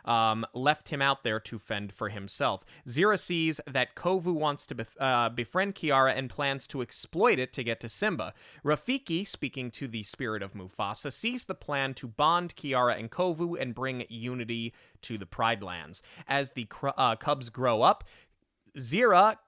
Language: English